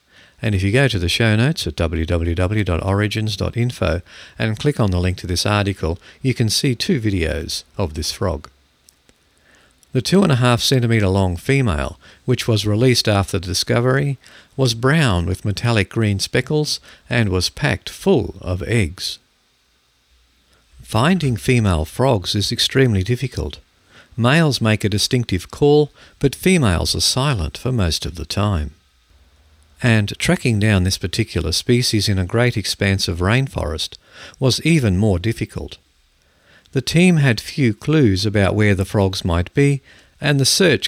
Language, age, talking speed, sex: English, 50-69, 145 wpm, male